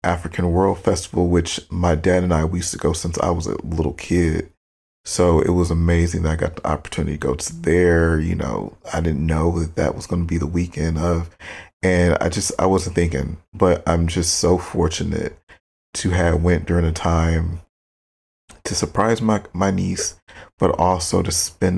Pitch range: 80-90 Hz